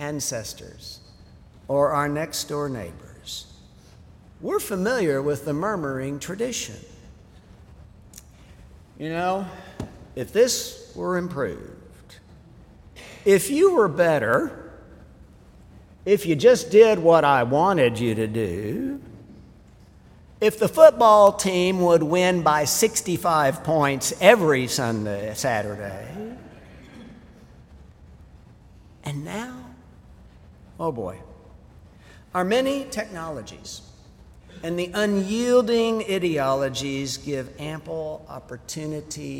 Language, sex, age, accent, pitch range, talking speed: English, male, 60-79, American, 115-180 Hz, 85 wpm